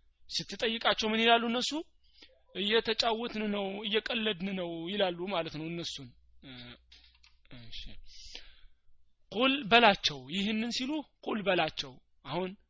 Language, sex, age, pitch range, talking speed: Amharic, male, 30-49, 155-205 Hz, 75 wpm